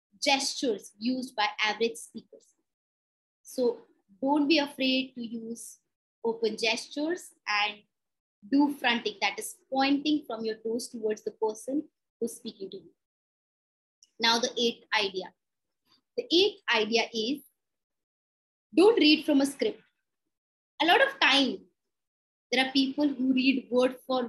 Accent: Indian